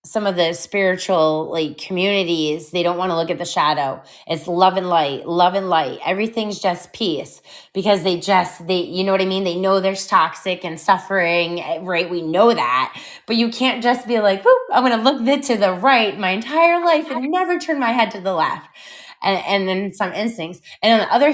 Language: English